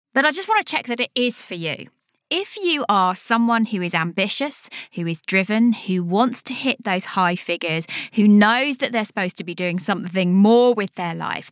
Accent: British